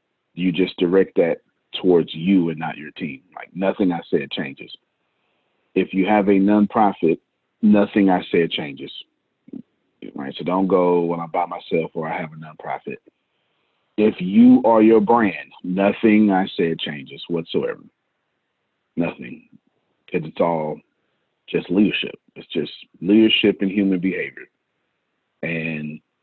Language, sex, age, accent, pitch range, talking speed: English, male, 40-59, American, 90-105 Hz, 135 wpm